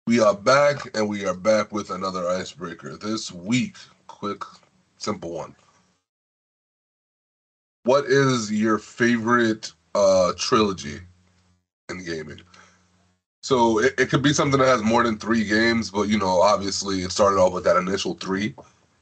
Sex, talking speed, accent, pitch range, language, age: male, 145 wpm, American, 90-120 Hz, English, 30-49